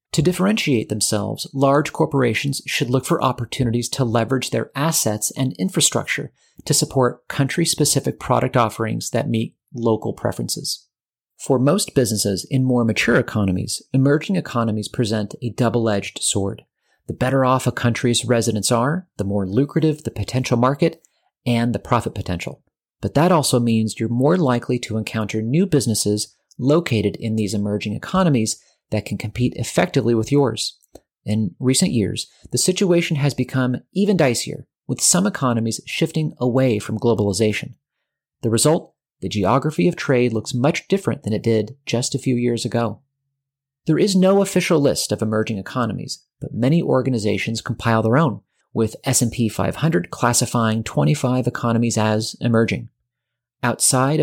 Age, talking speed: 40-59, 145 wpm